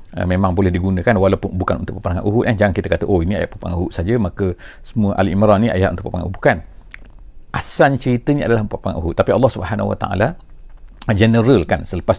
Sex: male